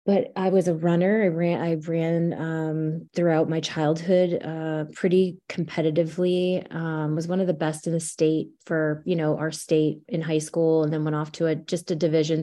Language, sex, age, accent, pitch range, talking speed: English, female, 20-39, American, 155-170 Hz, 205 wpm